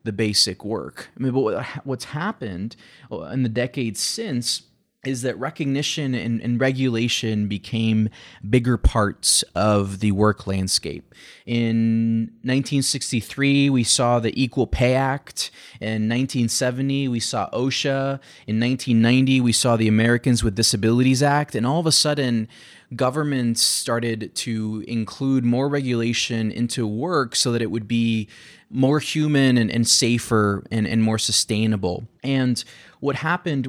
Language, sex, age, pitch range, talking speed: English, male, 20-39, 110-130 Hz, 135 wpm